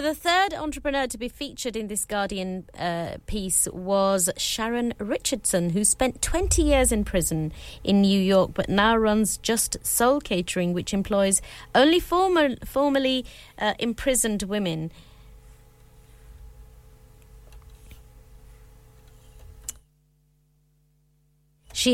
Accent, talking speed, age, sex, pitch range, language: British, 105 wpm, 30-49, female, 160-225 Hz, English